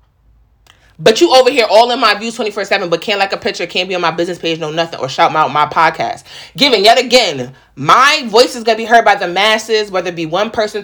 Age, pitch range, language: 20-39, 185-250 Hz, English